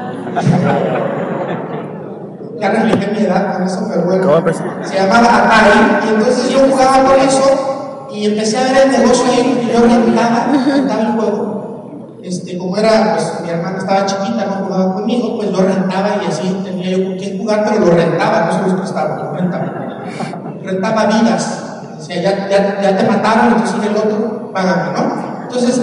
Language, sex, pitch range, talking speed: Spanish, male, 195-240 Hz, 180 wpm